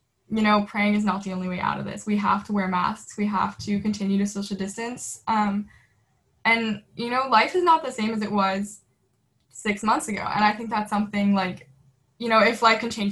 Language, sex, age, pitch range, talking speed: English, female, 10-29, 195-225 Hz, 230 wpm